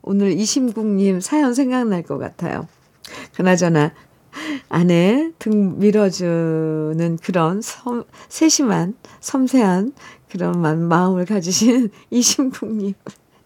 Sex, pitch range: female, 185-265 Hz